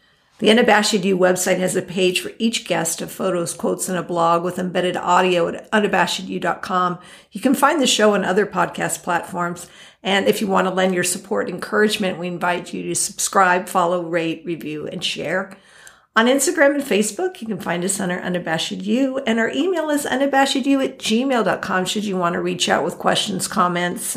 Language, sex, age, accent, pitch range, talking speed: English, female, 50-69, American, 185-225 Hz, 190 wpm